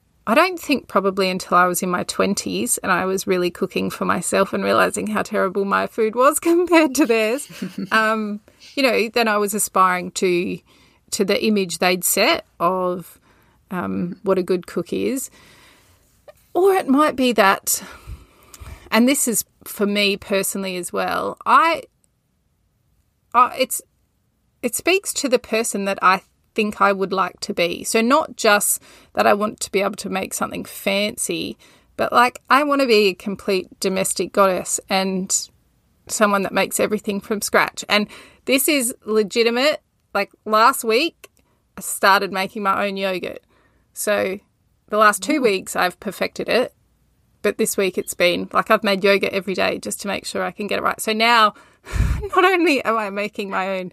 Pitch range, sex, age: 190-245 Hz, female, 30-49